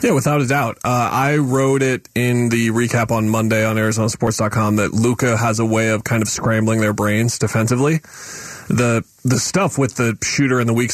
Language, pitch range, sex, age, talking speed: English, 110-125 Hz, male, 30-49, 200 wpm